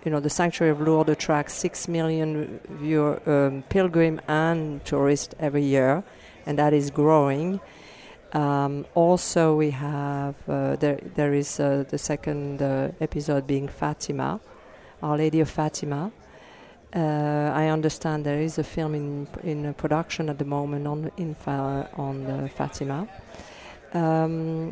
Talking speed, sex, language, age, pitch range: 150 wpm, female, English, 50-69, 140-155 Hz